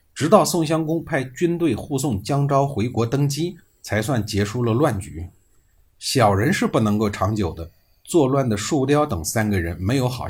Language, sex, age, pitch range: Chinese, male, 50-69, 95-135 Hz